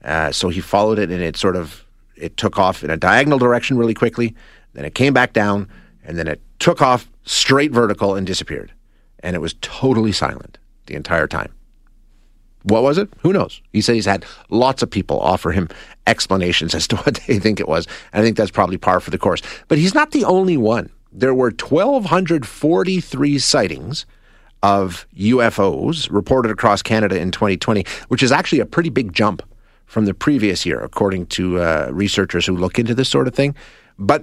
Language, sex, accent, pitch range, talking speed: English, male, American, 100-160 Hz, 195 wpm